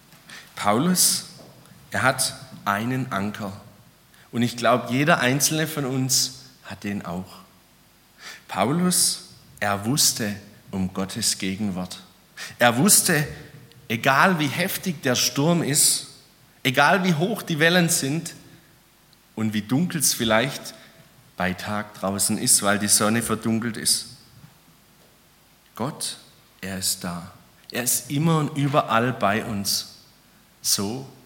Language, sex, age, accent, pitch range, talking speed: German, male, 40-59, German, 105-145 Hz, 115 wpm